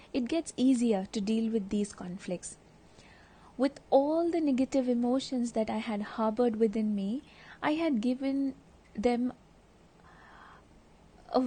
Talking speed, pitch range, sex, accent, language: 125 wpm, 215-270 Hz, female, Indian, English